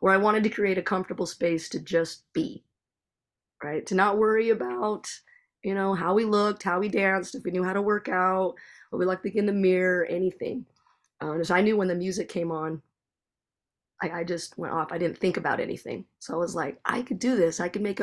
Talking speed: 235 wpm